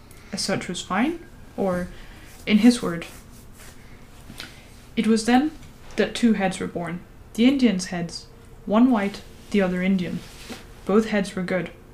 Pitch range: 165-215 Hz